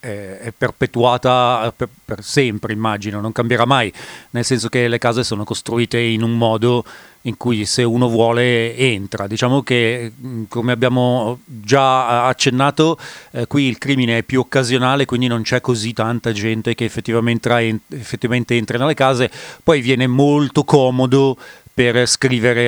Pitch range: 115-135 Hz